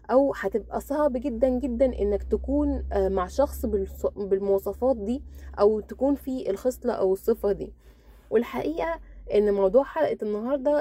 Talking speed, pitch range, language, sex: 130 wpm, 200-260 Hz, Arabic, female